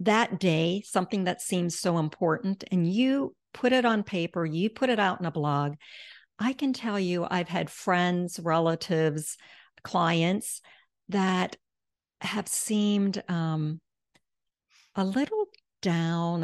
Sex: female